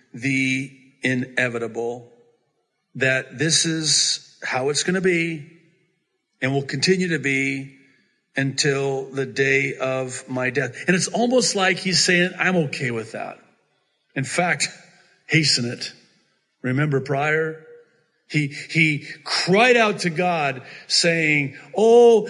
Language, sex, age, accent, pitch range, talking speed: English, male, 50-69, American, 130-190 Hz, 120 wpm